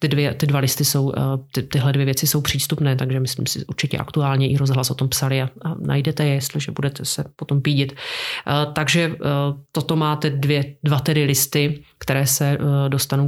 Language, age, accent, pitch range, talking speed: Czech, 30-49, native, 135-145 Hz, 185 wpm